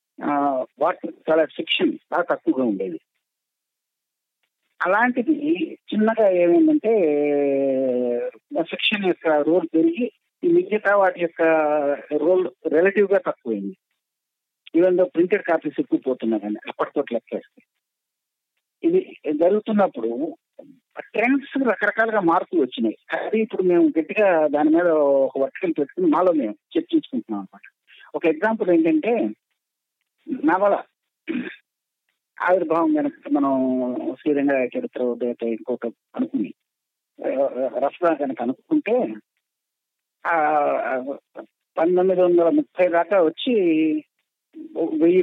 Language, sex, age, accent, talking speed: Telugu, male, 50-69, native, 90 wpm